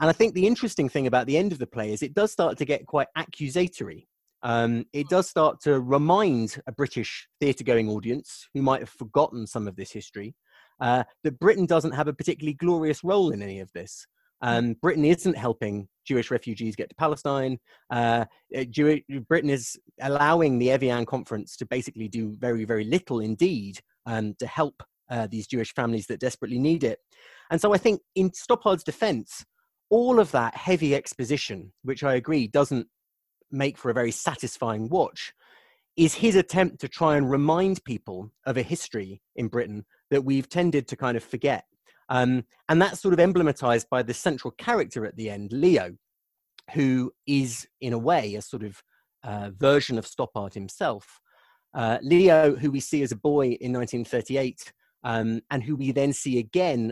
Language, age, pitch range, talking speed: English, 30-49, 115-160 Hz, 180 wpm